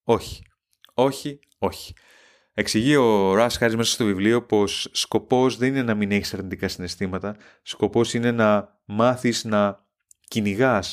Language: Greek